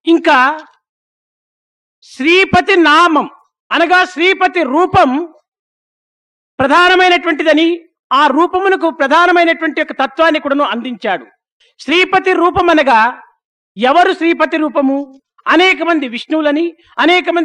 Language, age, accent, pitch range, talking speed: English, 50-69, Indian, 280-345 Hz, 105 wpm